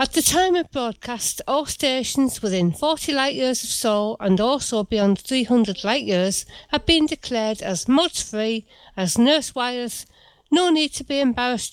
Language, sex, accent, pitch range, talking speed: English, female, British, 205-280 Hz, 170 wpm